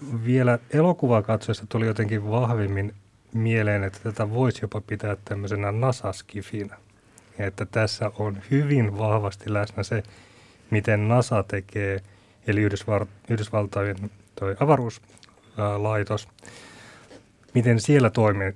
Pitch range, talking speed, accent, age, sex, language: 100-115 Hz, 105 wpm, native, 30-49, male, Finnish